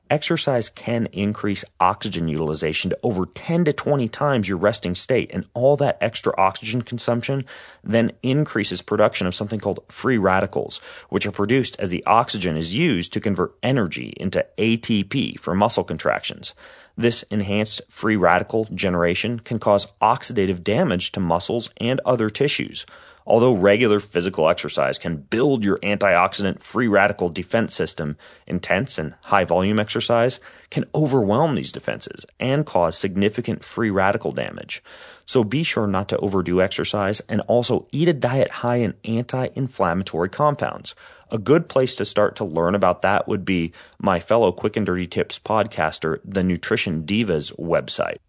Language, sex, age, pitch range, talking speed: English, male, 30-49, 90-120 Hz, 150 wpm